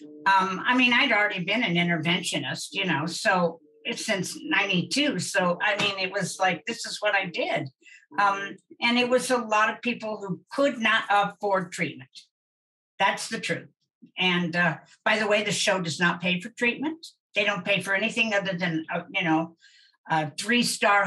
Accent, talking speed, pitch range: American, 185 wpm, 170-220 Hz